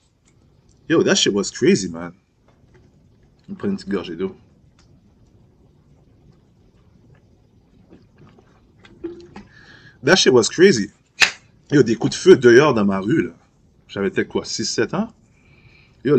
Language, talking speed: French, 115 wpm